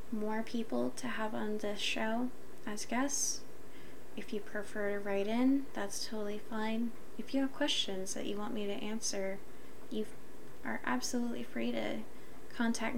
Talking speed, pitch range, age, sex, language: 155 wpm, 215-245 Hz, 10-29, female, English